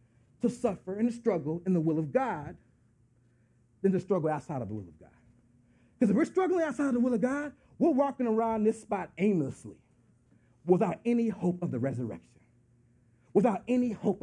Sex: male